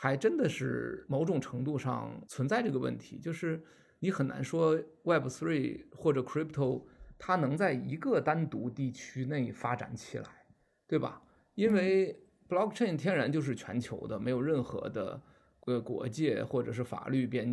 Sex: male